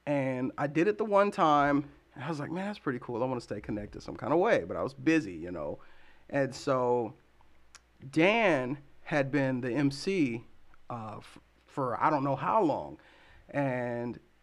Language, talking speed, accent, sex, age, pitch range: English, 190 wpm, American, male, 40-59, 125-160 Hz